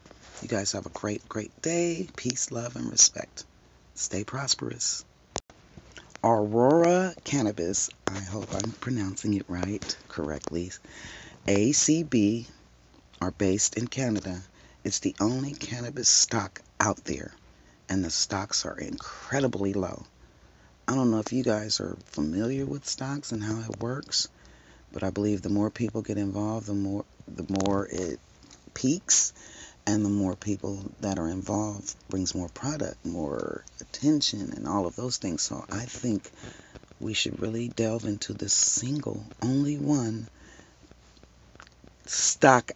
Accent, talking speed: American, 140 wpm